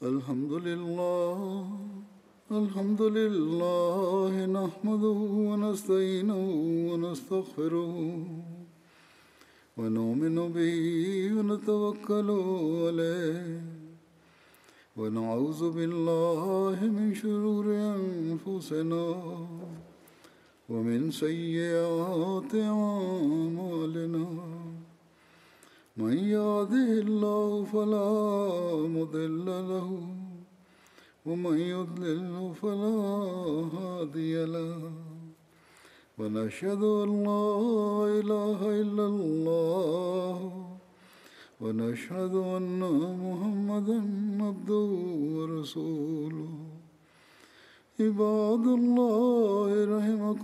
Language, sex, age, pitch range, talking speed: Bulgarian, male, 60-79, 165-205 Hz, 35 wpm